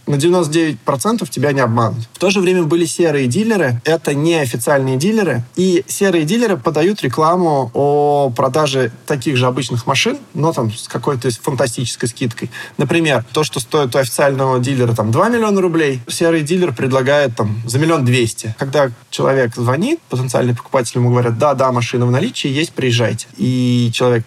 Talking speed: 165 wpm